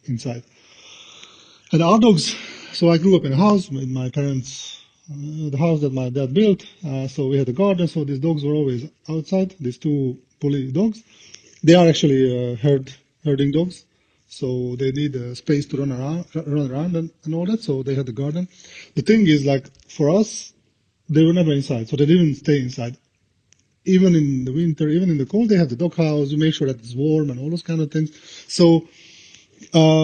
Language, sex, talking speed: English, male, 210 wpm